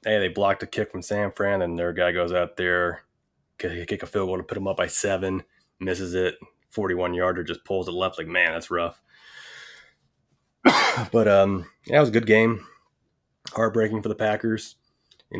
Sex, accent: male, American